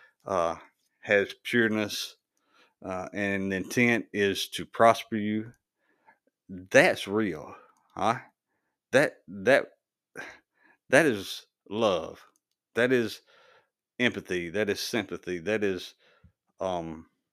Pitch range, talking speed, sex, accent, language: 95-120 Hz, 95 wpm, male, American, English